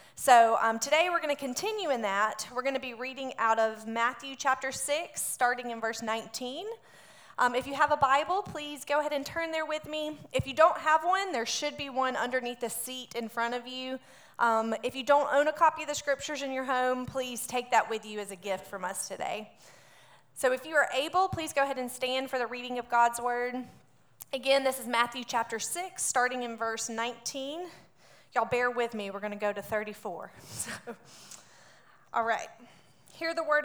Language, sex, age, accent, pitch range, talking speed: English, female, 30-49, American, 225-280 Hz, 210 wpm